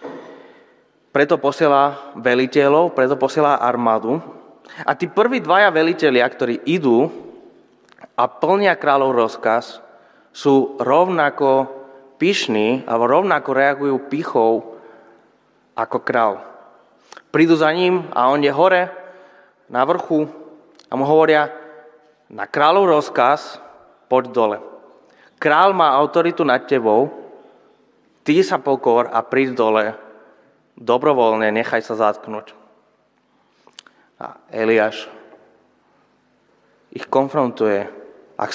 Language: Slovak